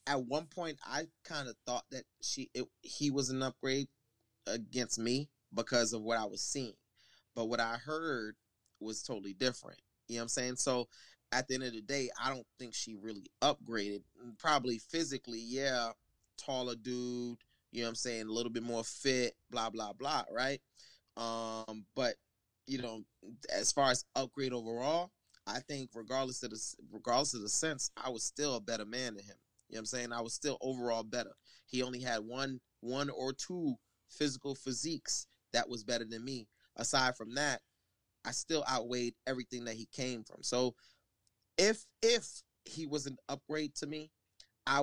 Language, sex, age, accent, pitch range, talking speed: English, male, 20-39, American, 115-140 Hz, 185 wpm